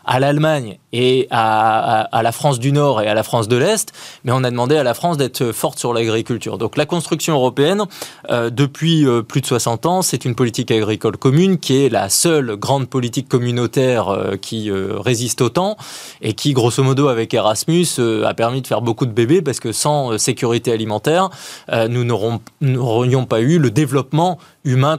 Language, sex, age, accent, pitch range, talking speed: French, male, 20-39, French, 115-155 Hz, 200 wpm